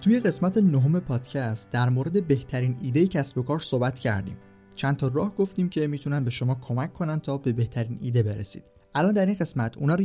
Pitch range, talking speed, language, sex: 120-150 Hz, 205 wpm, Persian, male